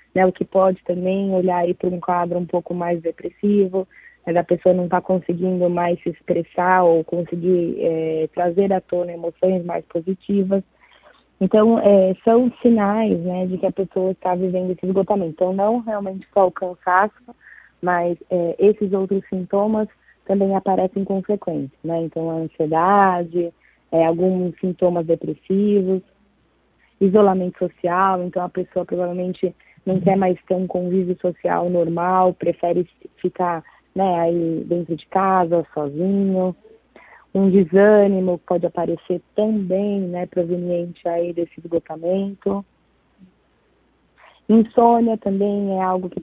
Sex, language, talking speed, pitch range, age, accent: female, Portuguese, 130 wpm, 175-195 Hz, 20-39, Brazilian